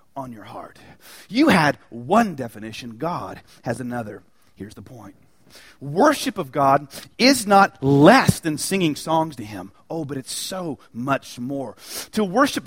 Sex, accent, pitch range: male, American, 145-230 Hz